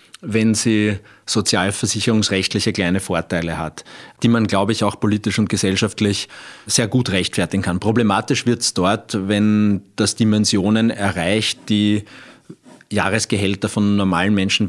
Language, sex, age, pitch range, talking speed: German, male, 30-49, 90-105 Hz, 125 wpm